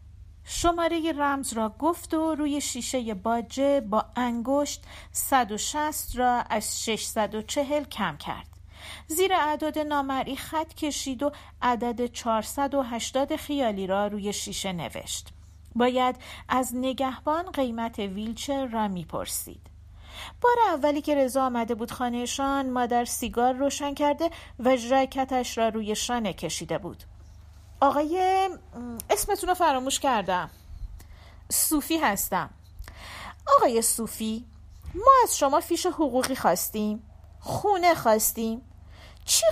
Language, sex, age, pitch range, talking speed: Persian, female, 50-69, 215-290 Hz, 110 wpm